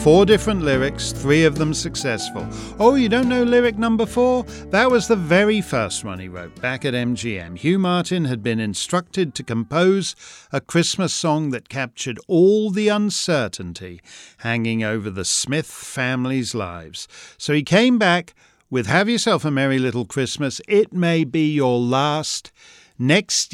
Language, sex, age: English, male, 50-69